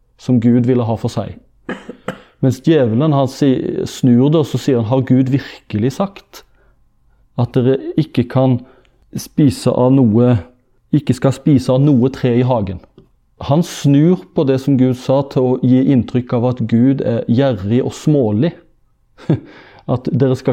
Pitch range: 115-135 Hz